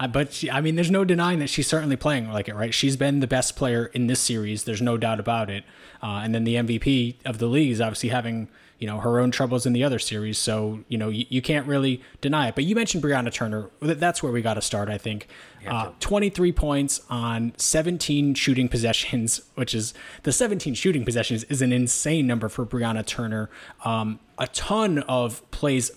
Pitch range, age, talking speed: 115-140 Hz, 20-39, 215 wpm